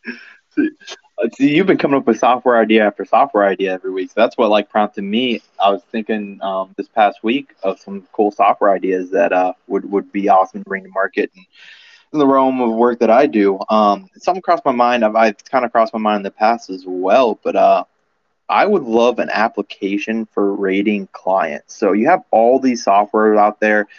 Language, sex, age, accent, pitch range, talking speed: English, male, 20-39, American, 100-115 Hz, 215 wpm